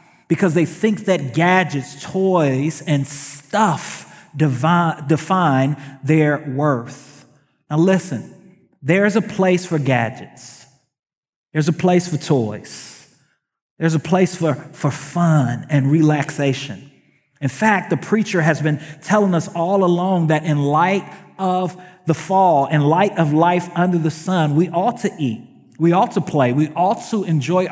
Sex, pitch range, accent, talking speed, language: male, 140-175 Hz, American, 145 wpm, English